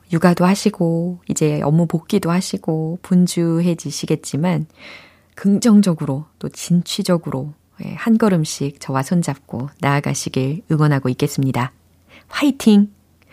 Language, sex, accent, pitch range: Korean, female, native, 155-235 Hz